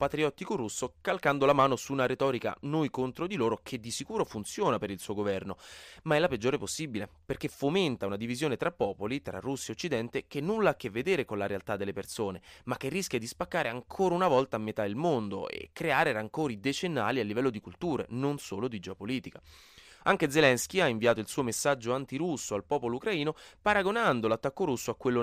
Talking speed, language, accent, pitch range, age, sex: 200 wpm, Italian, native, 105-145 Hz, 20-39, male